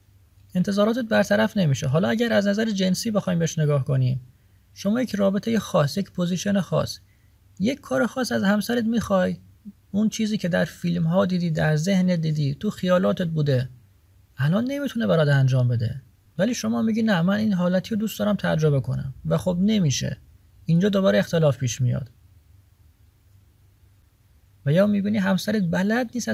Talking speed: 155 wpm